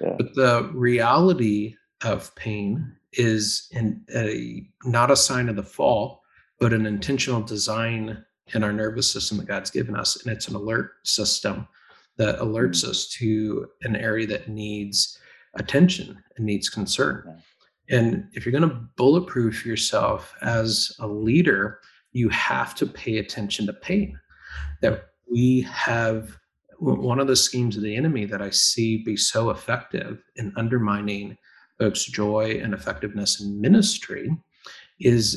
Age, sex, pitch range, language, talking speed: 40-59, male, 105-125 Hz, English, 145 wpm